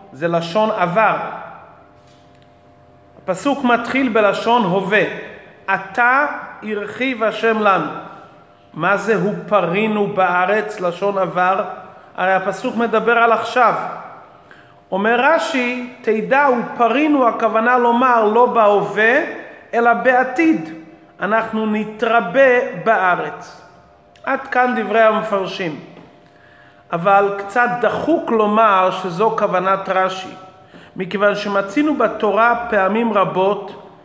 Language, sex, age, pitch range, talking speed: Hebrew, male, 40-59, 190-230 Hz, 90 wpm